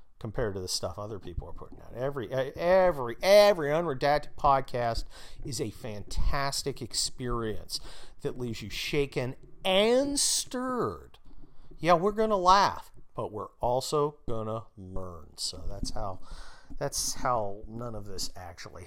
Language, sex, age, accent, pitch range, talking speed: English, male, 40-59, American, 115-180 Hz, 135 wpm